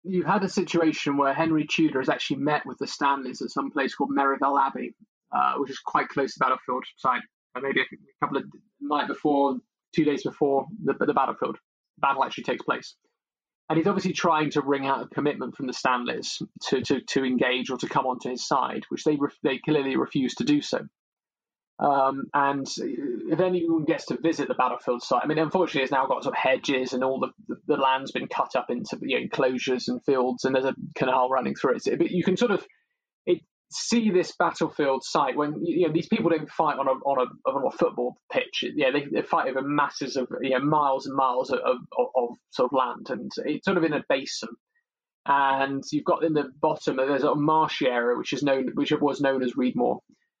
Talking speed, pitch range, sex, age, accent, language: 220 wpm, 135-170 Hz, male, 20-39, British, English